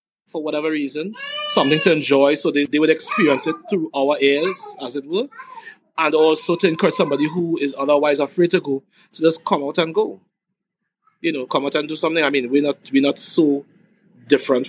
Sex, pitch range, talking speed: male, 135-190 Hz, 205 wpm